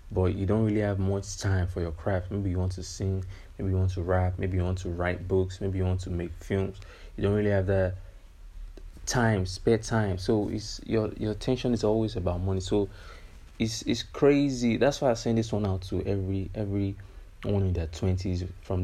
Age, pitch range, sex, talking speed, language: 20-39, 90-100 Hz, male, 215 wpm, English